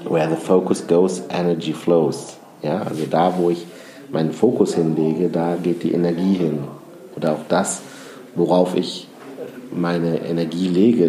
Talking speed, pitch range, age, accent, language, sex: 145 wpm, 85-115 Hz, 50-69, German, German, male